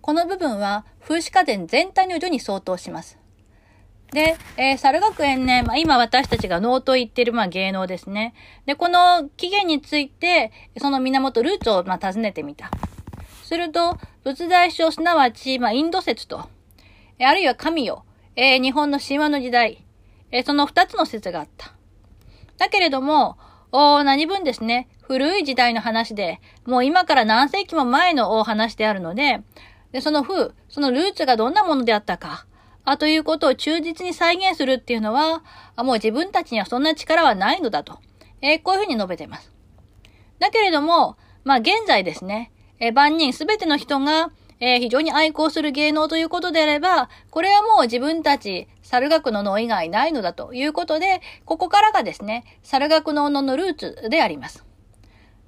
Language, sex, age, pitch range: Japanese, female, 40-59, 240-335 Hz